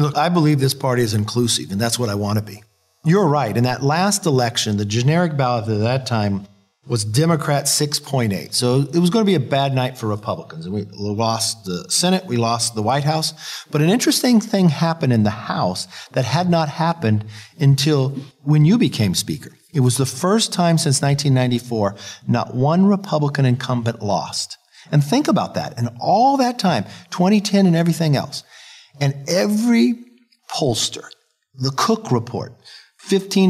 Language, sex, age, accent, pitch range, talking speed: English, male, 50-69, American, 120-170 Hz, 175 wpm